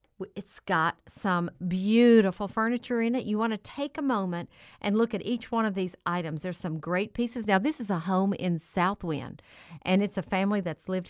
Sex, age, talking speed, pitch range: female, 50-69, 205 wpm, 170-210 Hz